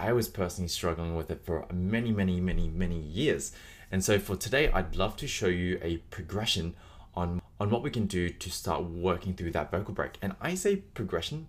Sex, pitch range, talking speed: male, 85-110 Hz, 210 wpm